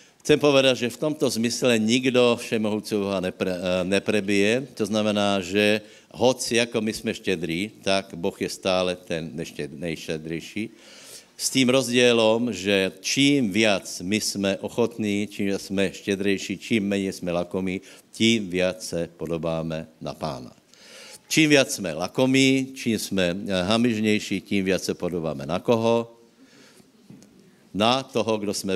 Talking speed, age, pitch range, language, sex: 135 wpm, 60-79, 90-110 Hz, Slovak, male